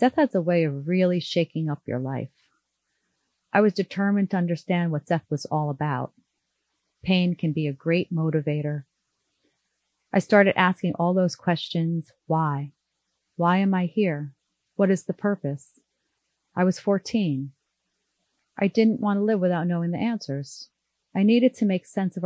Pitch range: 155-195 Hz